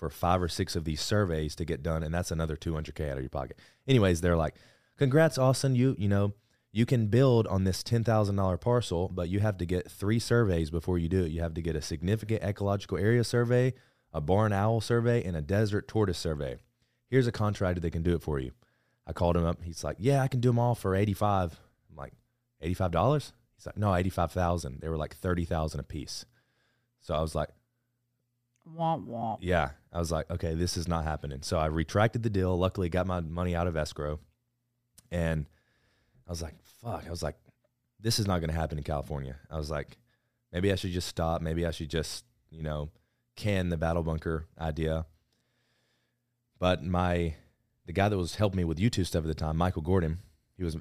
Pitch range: 80-115 Hz